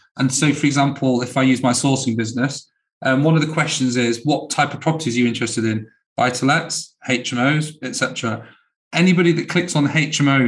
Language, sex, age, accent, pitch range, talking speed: English, male, 30-49, British, 125-150 Hz, 195 wpm